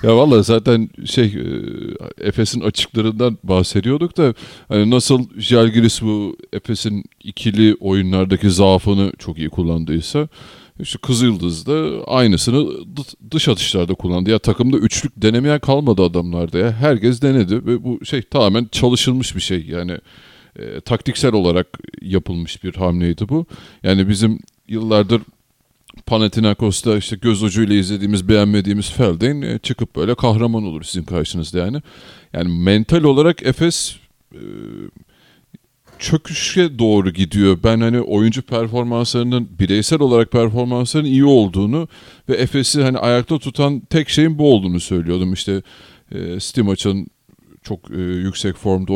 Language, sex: Turkish, male